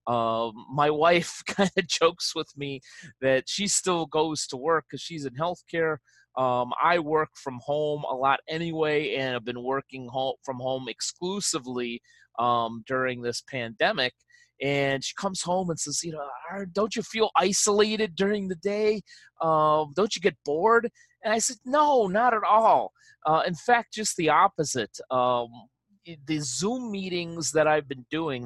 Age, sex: 30-49, male